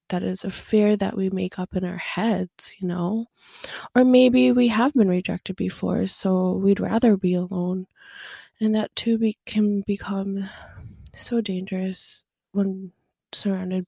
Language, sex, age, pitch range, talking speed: English, female, 20-39, 195-220 Hz, 145 wpm